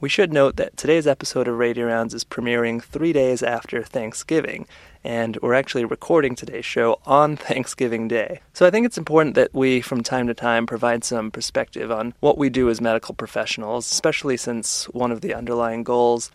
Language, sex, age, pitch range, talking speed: English, male, 30-49, 115-130 Hz, 190 wpm